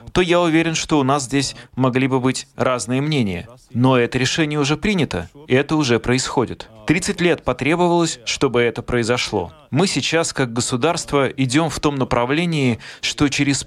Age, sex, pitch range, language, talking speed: 20-39, male, 120-155 Hz, Russian, 160 wpm